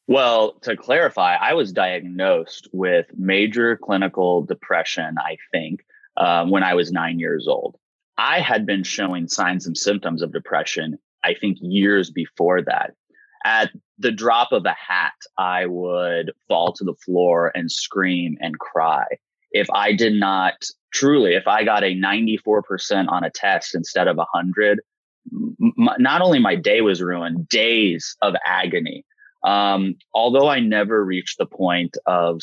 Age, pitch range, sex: 20-39, 90-125 Hz, male